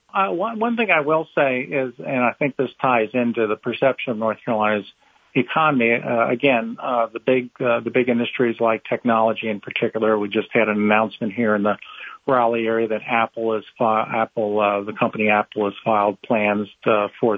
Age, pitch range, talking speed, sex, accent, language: 50-69, 110-135 Hz, 185 wpm, male, American, English